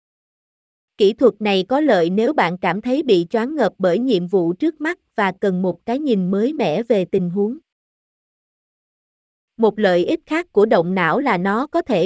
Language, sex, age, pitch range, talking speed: Vietnamese, female, 20-39, 190-250 Hz, 190 wpm